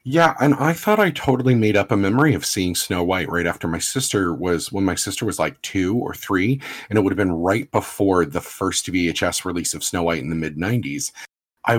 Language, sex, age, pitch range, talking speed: English, male, 40-59, 90-130 Hz, 230 wpm